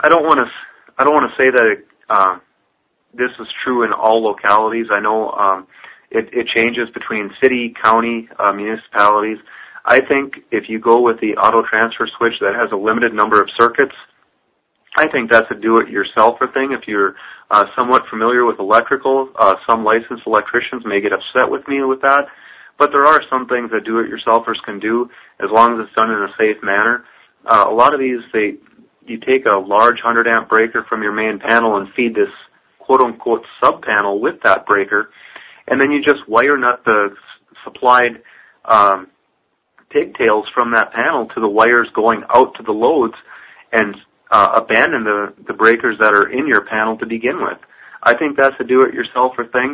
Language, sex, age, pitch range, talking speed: English, male, 30-49, 110-130 Hz, 185 wpm